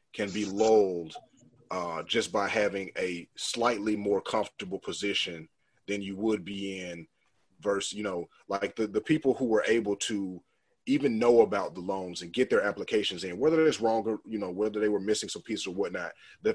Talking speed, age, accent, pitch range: 190 wpm, 30-49, American, 100-125 Hz